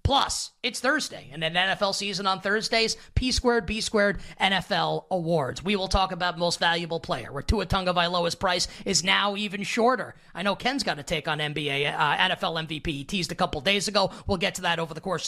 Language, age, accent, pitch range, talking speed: English, 20-39, American, 170-220 Hz, 210 wpm